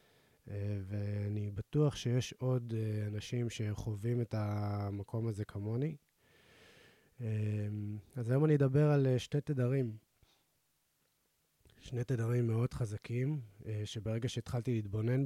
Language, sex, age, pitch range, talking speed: Hebrew, male, 20-39, 105-125 Hz, 95 wpm